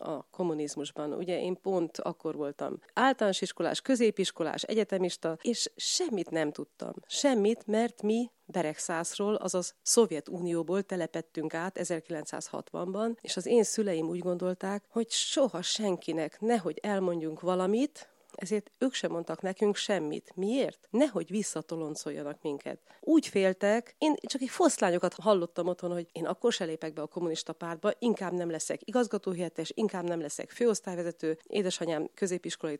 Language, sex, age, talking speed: Hungarian, female, 40-59, 130 wpm